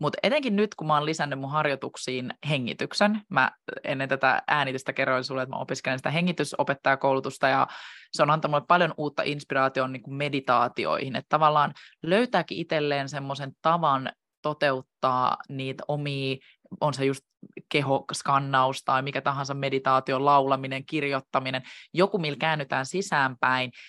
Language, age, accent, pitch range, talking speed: Finnish, 20-39, native, 135-160 Hz, 140 wpm